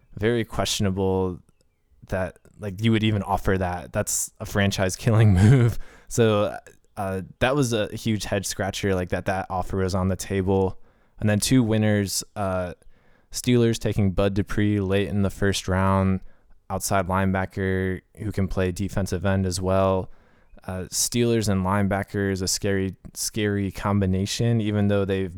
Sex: male